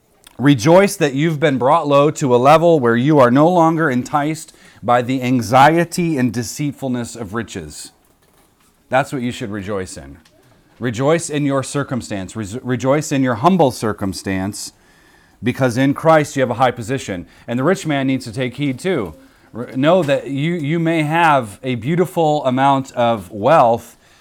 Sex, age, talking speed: male, 30-49, 160 wpm